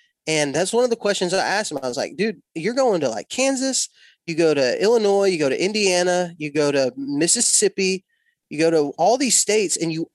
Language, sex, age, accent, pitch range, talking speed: English, male, 20-39, American, 140-185 Hz, 225 wpm